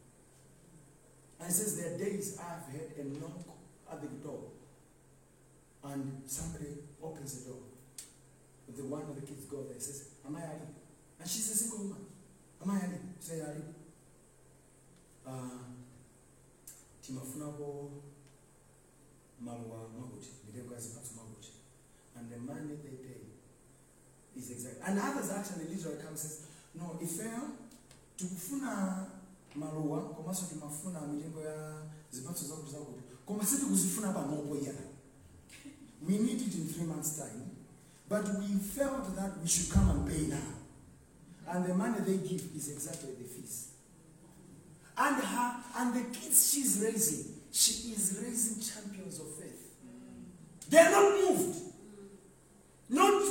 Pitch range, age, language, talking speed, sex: 140-200 Hz, 40-59, English, 115 wpm, male